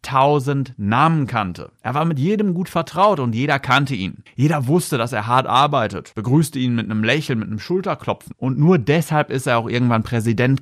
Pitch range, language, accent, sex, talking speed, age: 110-150 Hz, German, German, male, 200 wpm, 30-49